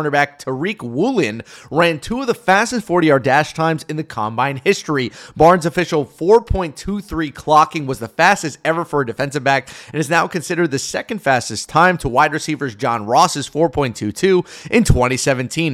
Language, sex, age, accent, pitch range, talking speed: English, male, 30-49, American, 135-175 Hz, 155 wpm